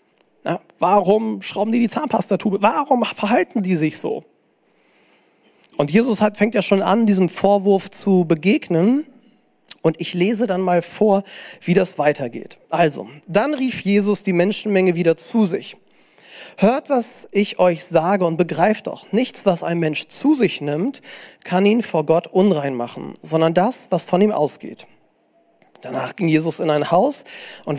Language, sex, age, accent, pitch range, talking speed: German, male, 40-59, German, 165-215 Hz, 160 wpm